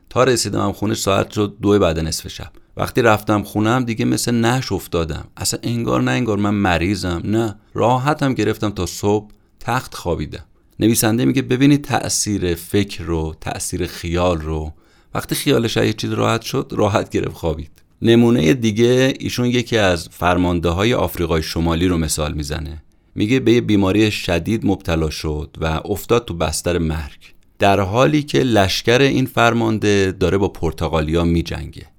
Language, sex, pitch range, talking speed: Persian, male, 85-115 Hz, 155 wpm